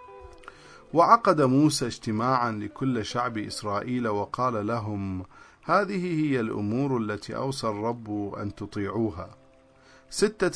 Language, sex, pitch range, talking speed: English, male, 105-135 Hz, 95 wpm